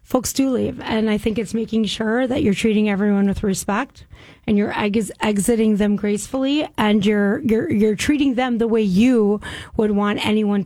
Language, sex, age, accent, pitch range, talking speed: English, female, 30-49, American, 205-240 Hz, 195 wpm